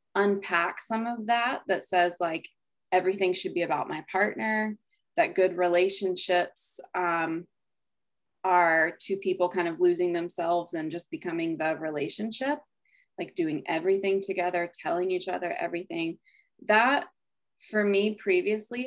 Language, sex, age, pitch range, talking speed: English, female, 20-39, 170-210 Hz, 130 wpm